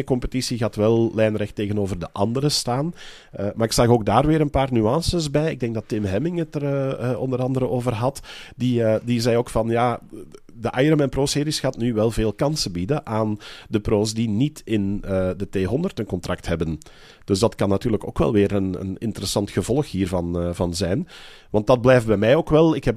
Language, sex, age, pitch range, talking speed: Dutch, male, 40-59, 100-125 Hz, 215 wpm